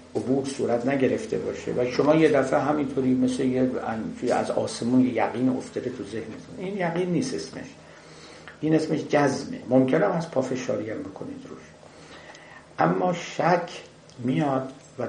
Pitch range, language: 120-145 Hz, Persian